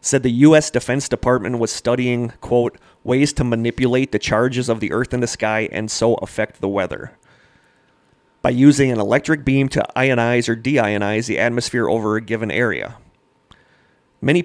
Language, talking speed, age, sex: English, 165 wpm, 30-49, male